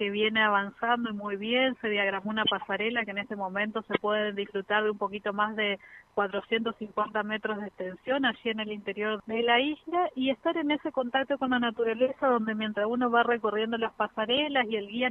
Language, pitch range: Spanish, 215-255 Hz